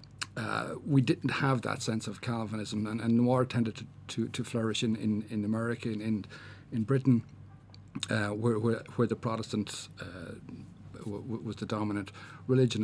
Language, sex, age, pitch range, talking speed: English, male, 50-69, 110-130 Hz, 160 wpm